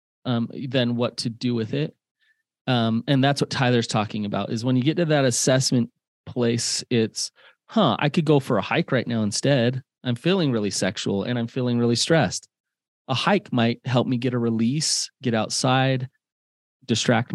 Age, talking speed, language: 30-49, 185 wpm, English